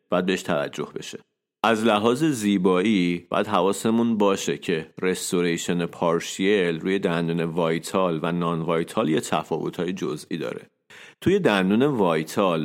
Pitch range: 85-105 Hz